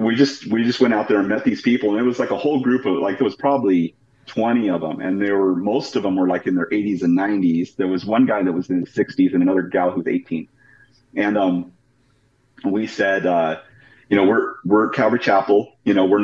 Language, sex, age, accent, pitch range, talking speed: English, male, 40-59, American, 90-120 Hz, 250 wpm